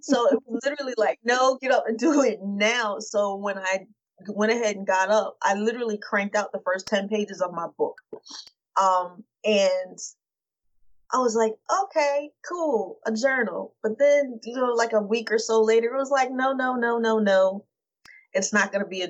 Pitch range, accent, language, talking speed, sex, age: 195-245 Hz, American, English, 200 wpm, female, 20-39